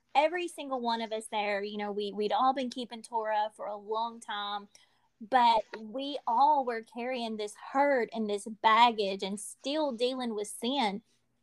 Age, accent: 20-39, American